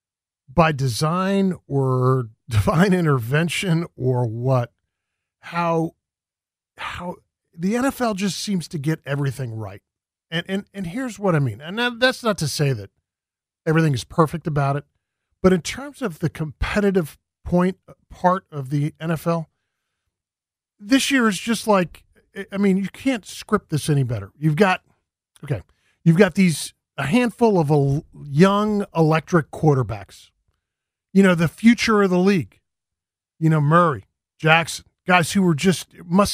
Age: 40-59